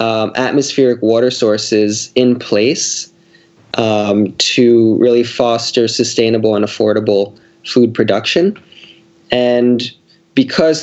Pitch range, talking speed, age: 110-125 Hz, 95 wpm, 20-39